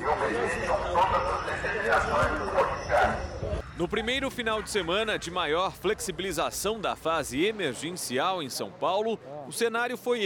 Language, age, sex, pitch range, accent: Portuguese, 40-59, male, 185-235 Hz, Brazilian